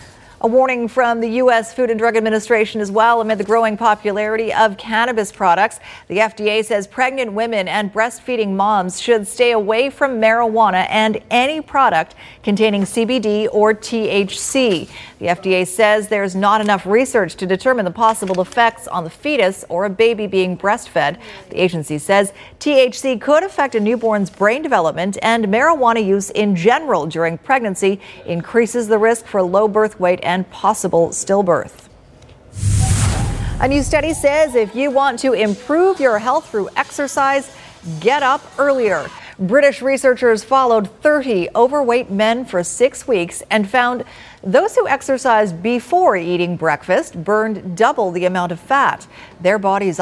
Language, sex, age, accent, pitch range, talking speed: English, female, 40-59, American, 185-240 Hz, 150 wpm